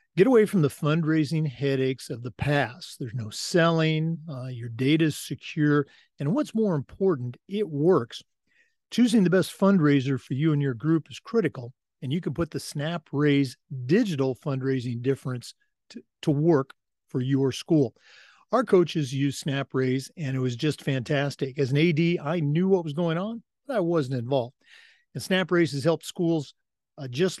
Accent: American